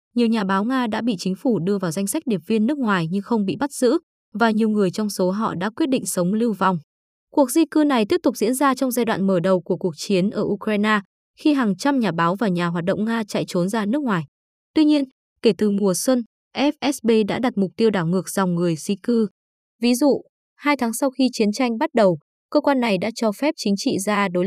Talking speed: 255 wpm